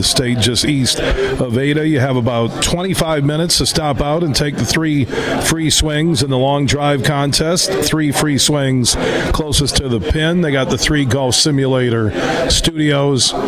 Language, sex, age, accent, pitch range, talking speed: English, male, 40-59, American, 125-150 Hz, 175 wpm